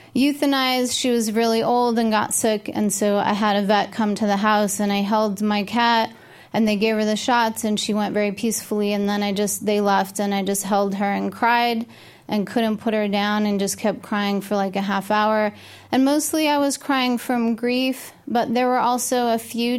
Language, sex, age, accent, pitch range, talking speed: English, female, 20-39, American, 210-245 Hz, 225 wpm